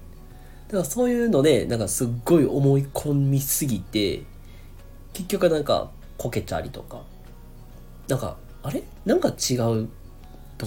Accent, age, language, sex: native, 40-59, Japanese, male